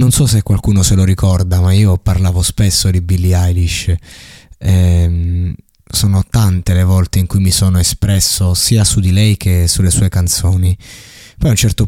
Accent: native